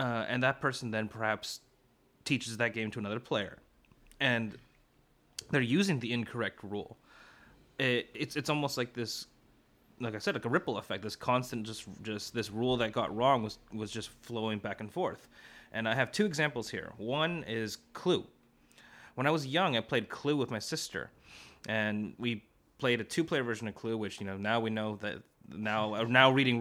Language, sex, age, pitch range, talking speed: English, male, 30-49, 110-125 Hz, 190 wpm